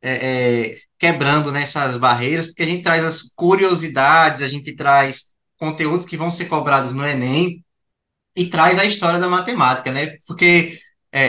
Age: 20-39